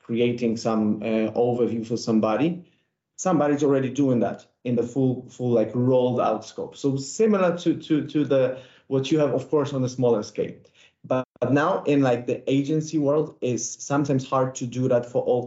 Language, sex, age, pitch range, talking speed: English, male, 30-49, 115-135 Hz, 190 wpm